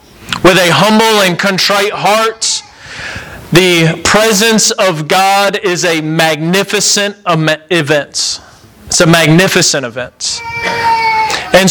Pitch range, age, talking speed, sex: 175-205 Hz, 30-49, 95 wpm, male